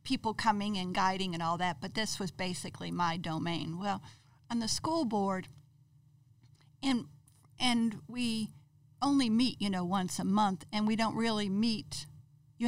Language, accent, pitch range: English, American, 165-215 Hz